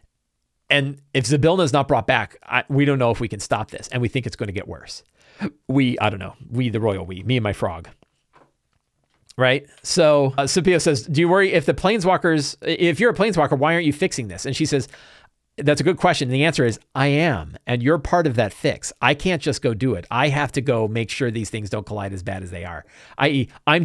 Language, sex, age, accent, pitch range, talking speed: English, male, 40-59, American, 110-155 Hz, 245 wpm